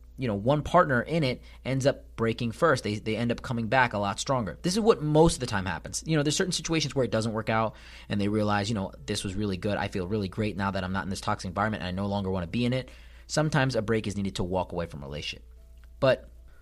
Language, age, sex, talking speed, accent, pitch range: English, 30-49, male, 285 wpm, American, 95-125 Hz